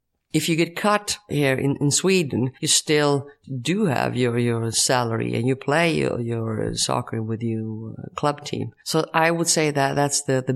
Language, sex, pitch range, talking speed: English, female, 125-155 Hz, 190 wpm